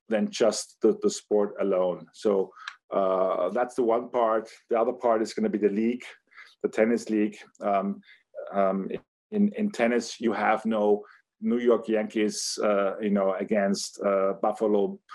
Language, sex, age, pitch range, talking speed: English, male, 50-69, 100-120 Hz, 160 wpm